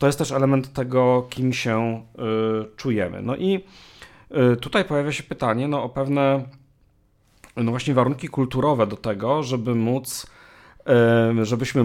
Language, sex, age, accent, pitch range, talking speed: Polish, male, 40-59, native, 105-130 Hz, 130 wpm